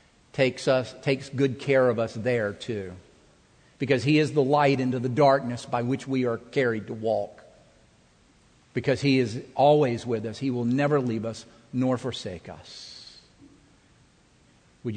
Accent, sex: American, male